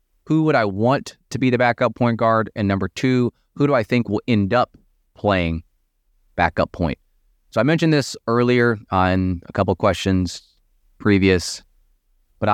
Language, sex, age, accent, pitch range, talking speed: English, male, 20-39, American, 90-110 Hz, 170 wpm